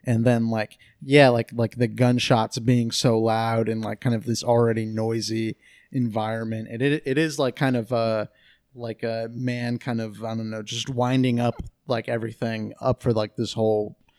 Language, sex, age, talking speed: English, male, 30-49, 195 wpm